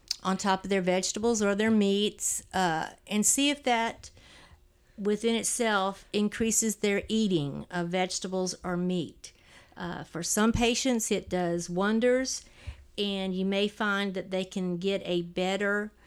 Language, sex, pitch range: English, female, 180-210 Hz